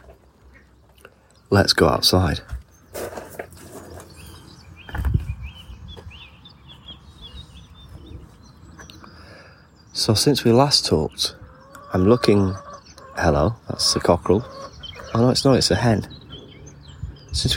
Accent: British